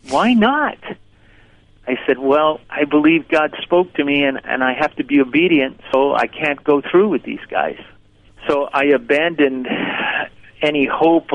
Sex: male